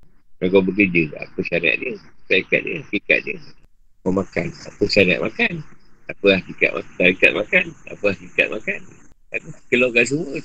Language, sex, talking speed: Malay, male, 155 wpm